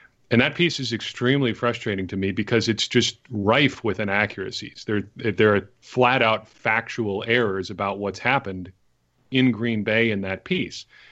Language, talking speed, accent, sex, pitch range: English, 155 wpm, American, male, 105-120 Hz